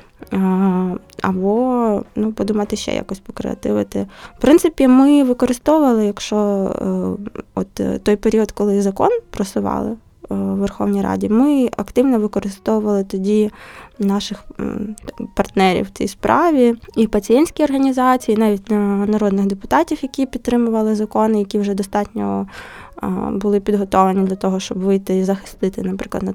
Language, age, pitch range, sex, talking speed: Ukrainian, 20-39, 185-220 Hz, female, 120 wpm